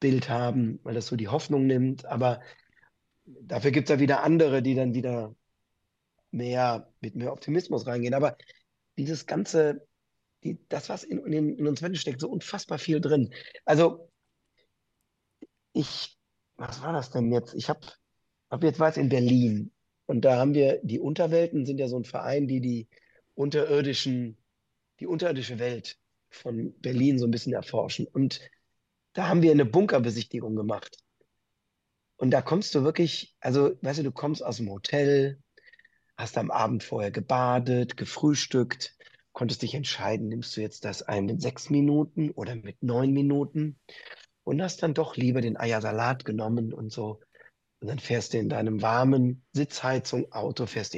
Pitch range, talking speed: 120-150 Hz, 160 wpm